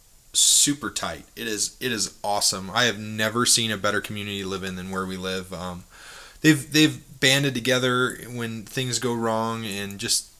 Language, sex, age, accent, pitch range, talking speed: English, male, 20-39, American, 95-130 Hz, 185 wpm